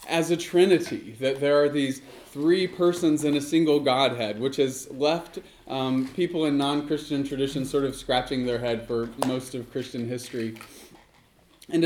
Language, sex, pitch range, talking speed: English, male, 130-155 Hz, 160 wpm